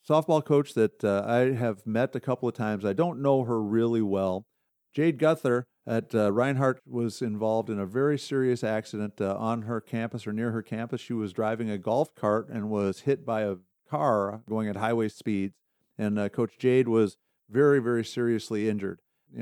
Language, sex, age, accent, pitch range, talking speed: English, male, 50-69, American, 105-120 Hz, 195 wpm